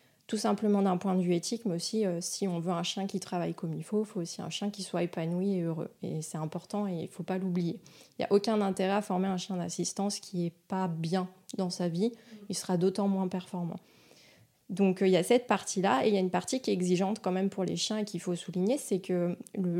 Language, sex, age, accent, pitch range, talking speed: French, female, 20-39, French, 175-200 Hz, 270 wpm